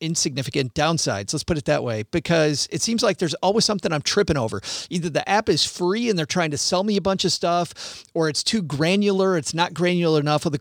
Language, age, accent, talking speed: English, 40-59, American, 240 wpm